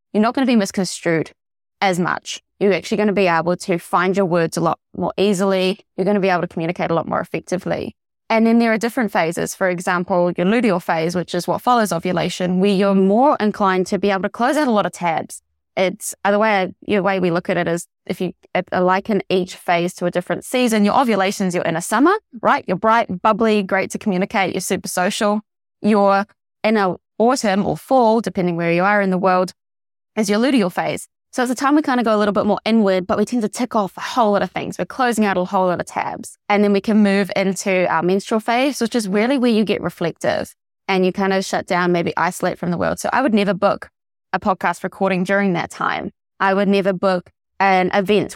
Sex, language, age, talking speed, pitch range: female, English, 20-39, 235 wpm, 180-215 Hz